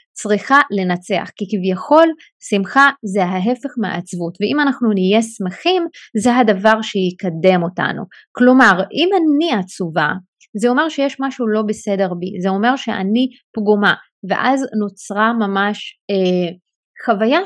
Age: 30-49